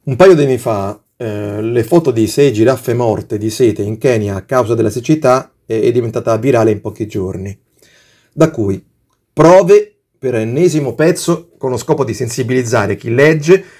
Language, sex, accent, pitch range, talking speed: Italian, male, native, 115-175 Hz, 175 wpm